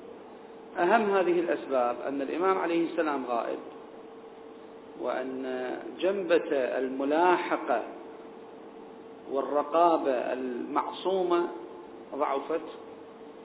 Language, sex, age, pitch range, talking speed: Arabic, male, 40-59, 150-185 Hz, 60 wpm